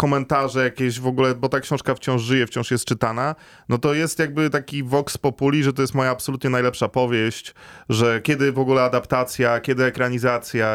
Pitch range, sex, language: 125-150 Hz, male, Polish